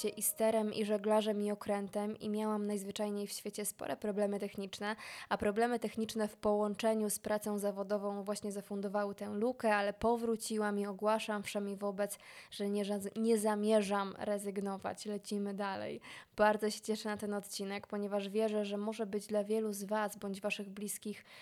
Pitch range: 205-220 Hz